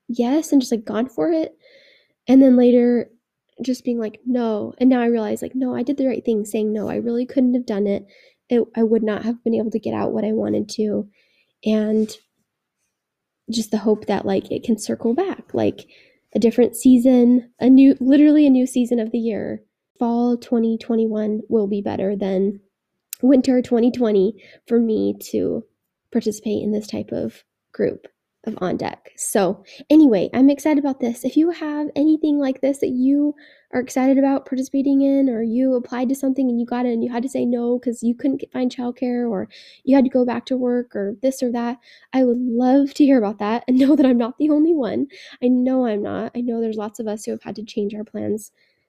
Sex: female